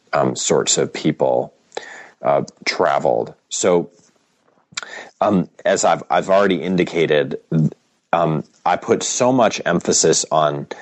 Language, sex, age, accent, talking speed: English, male, 40-59, American, 110 wpm